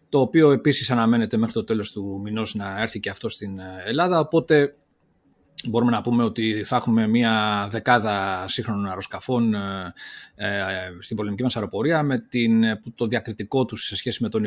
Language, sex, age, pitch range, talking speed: Greek, male, 30-49, 105-125 Hz, 160 wpm